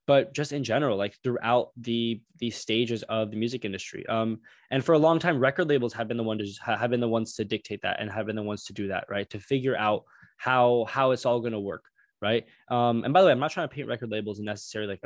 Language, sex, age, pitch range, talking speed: English, male, 10-29, 110-125 Hz, 270 wpm